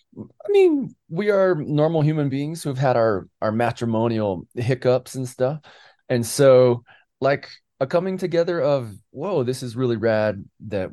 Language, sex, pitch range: English, male, 100-140 Hz